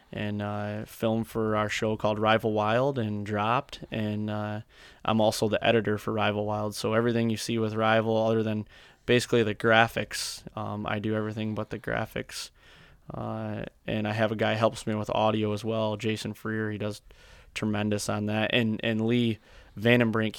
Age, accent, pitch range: 20-39, American, 105-115 Hz